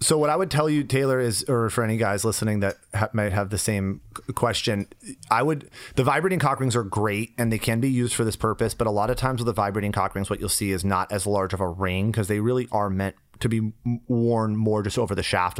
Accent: American